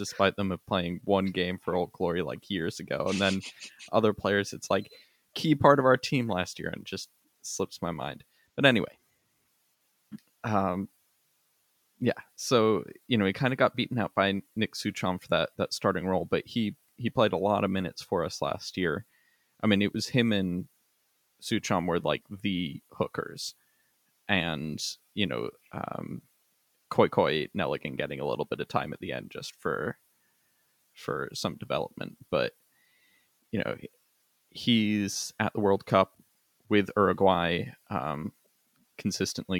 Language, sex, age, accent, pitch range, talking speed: English, male, 20-39, American, 95-110 Hz, 160 wpm